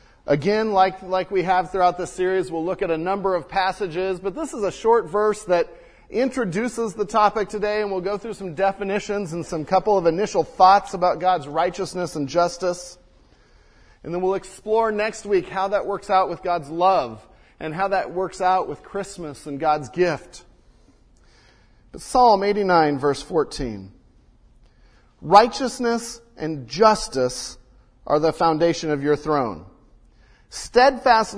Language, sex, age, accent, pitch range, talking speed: English, male, 40-59, American, 165-215 Hz, 155 wpm